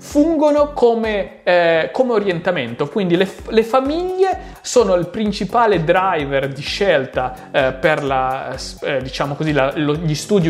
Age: 30-49